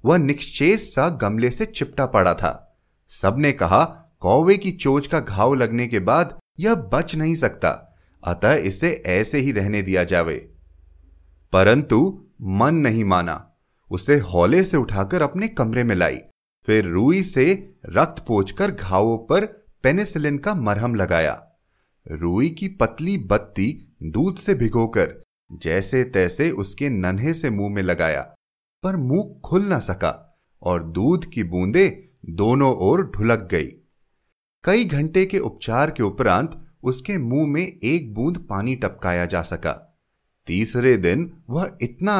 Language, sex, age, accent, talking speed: Hindi, male, 30-49, native, 140 wpm